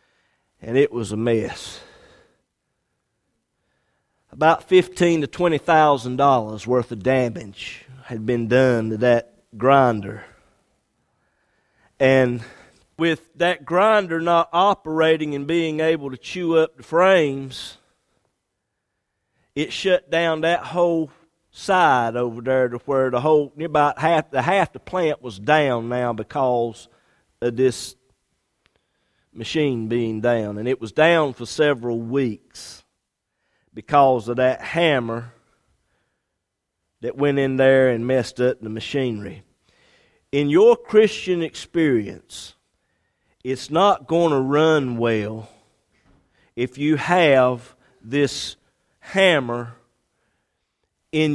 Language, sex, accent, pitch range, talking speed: English, male, American, 120-160 Hz, 115 wpm